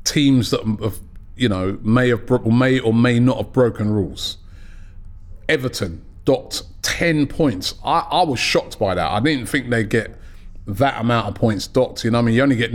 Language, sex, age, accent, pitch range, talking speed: English, male, 30-49, British, 100-135 Hz, 200 wpm